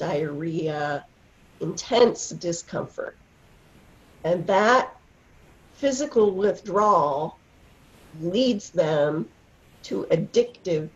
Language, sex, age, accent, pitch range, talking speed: English, female, 40-59, American, 175-275 Hz, 60 wpm